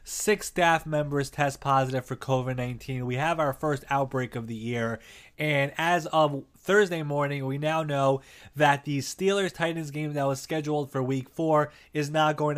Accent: American